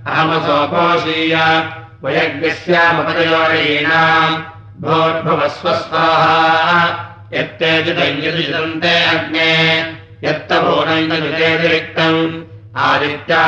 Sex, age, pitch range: male, 60-79, 155-165 Hz